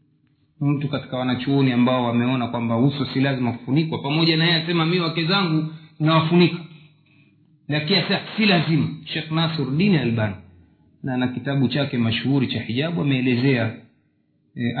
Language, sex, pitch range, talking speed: Swahili, male, 125-155 Hz, 130 wpm